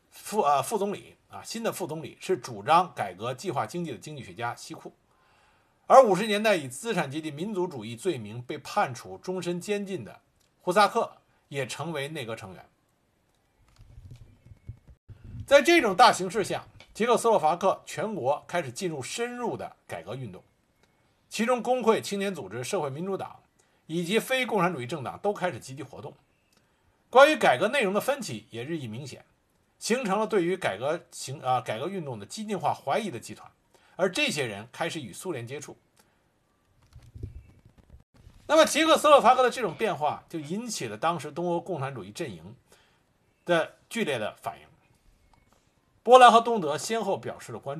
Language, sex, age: Chinese, male, 50-69